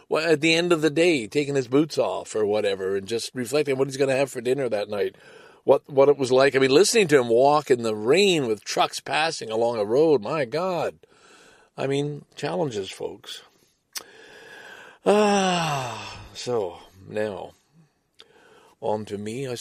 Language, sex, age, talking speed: English, male, 50-69, 180 wpm